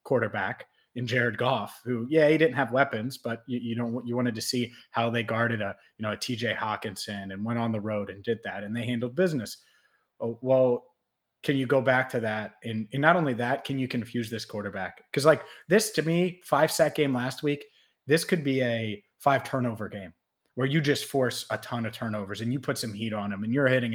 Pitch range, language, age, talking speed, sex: 115-140 Hz, English, 30-49, 230 wpm, male